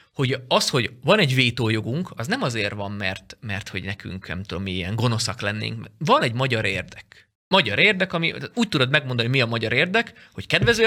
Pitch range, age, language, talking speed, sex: 115-185 Hz, 20-39, Hungarian, 190 wpm, male